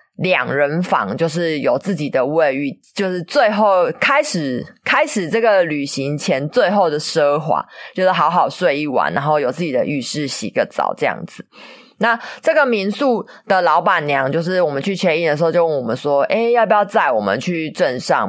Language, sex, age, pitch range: Chinese, female, 20-39, 150-205 Hz